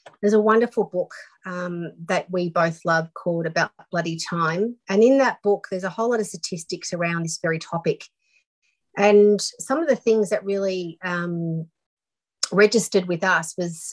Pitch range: 170-210 Hz